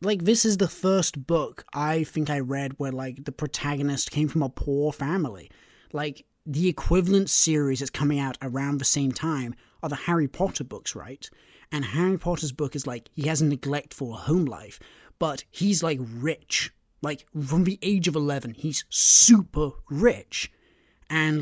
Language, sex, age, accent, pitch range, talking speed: English, male, 30-49, British, 140-185 Hz, 175 wpm